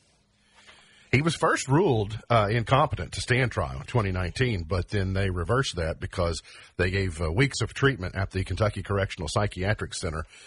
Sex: male